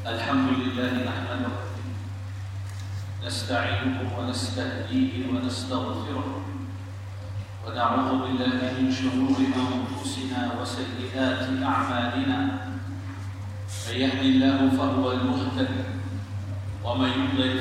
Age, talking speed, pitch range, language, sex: 40-59, 65 wpm, 100-130 Hz, Arabic, male